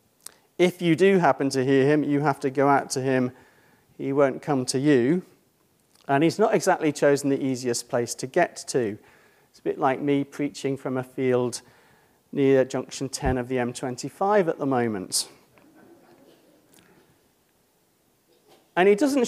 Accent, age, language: British, 40-59, English